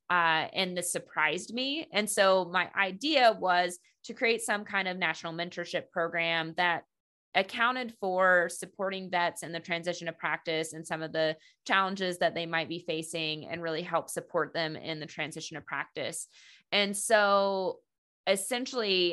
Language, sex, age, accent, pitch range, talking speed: English, female, 20-39, American, 170-205 Hz, 160 wpm